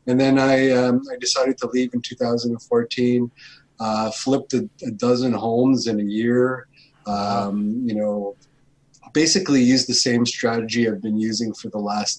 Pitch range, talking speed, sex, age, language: 110-130 Hz, 160 wpm, male, 30-49, English